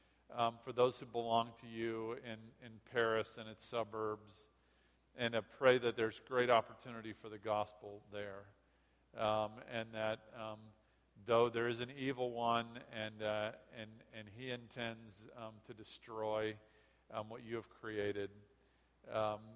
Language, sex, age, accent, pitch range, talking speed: English, male, 50-69, American, 105-115 Hz, 145 wpm